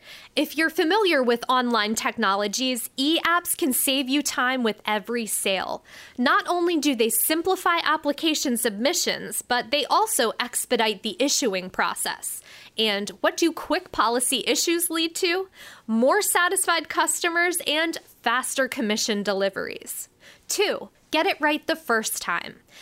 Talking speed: 130 wpm